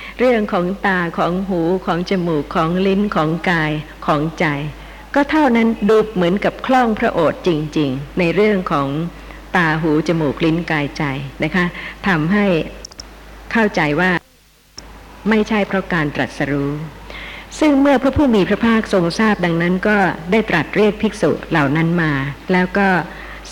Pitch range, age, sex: 160-210 Hz, 60-79, female